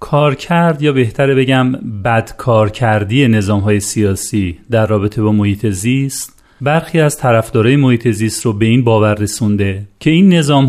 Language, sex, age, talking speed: Persian, male, 40-59, 165 wpm